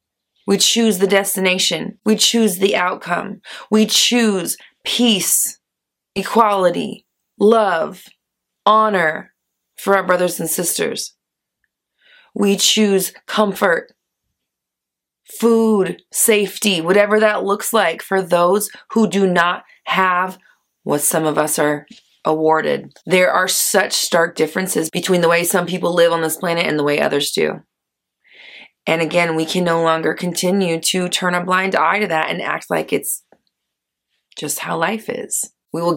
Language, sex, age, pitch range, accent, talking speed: English, female, 20-39, 170-200 Hz, American, 140 wpm